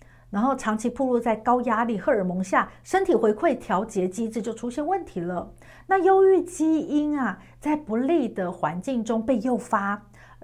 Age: 50-69